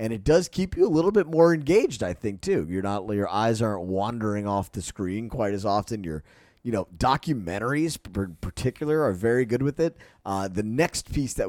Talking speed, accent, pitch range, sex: 220 wpm, American, 100-170 Hz, male